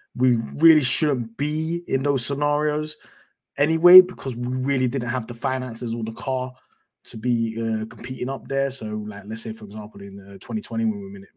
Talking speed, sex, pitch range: 175 wpm, male, 115-150 Hz